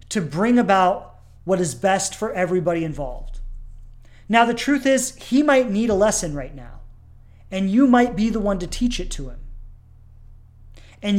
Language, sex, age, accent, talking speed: English, male, 30-49, American, 170 wpm